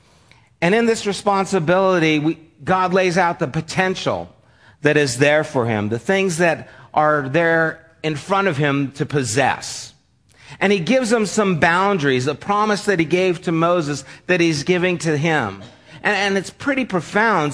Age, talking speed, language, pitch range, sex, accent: 50-69, 165 wpm, English, 130-190 Hz, male, American